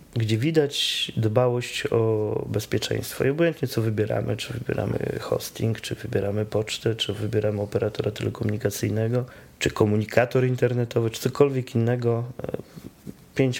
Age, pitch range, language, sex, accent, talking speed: 20-39, 110-125 Hz, Polish, male, native, 115 wpm